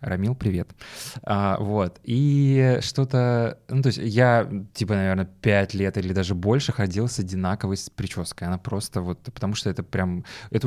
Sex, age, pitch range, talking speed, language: male, 20-39, 100-125 Hz, 170 wpm, Russian